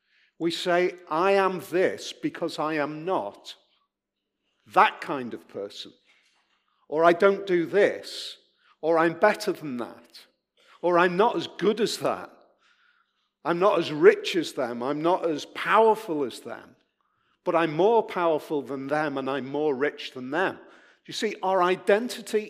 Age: 50-69